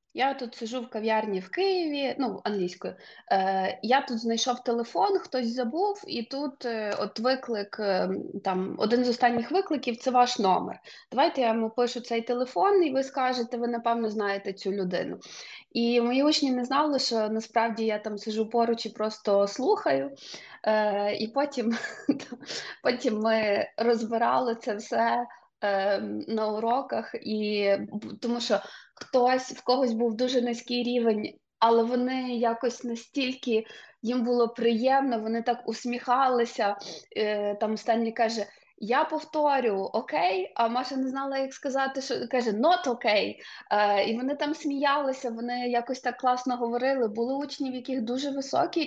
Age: 20-39